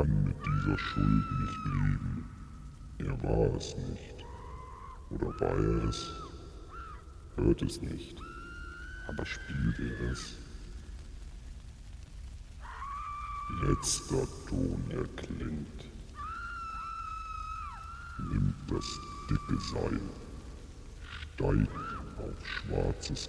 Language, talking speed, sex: German, 80 wpm, female